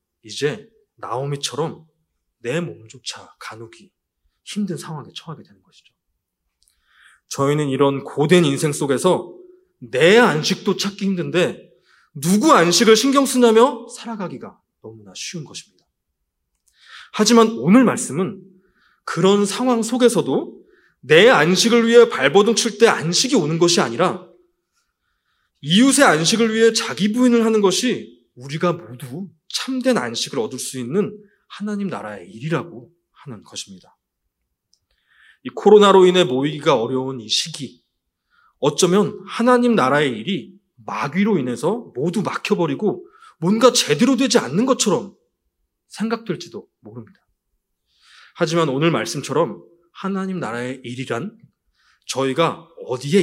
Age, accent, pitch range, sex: 20-39, native, 145-230 Hz, male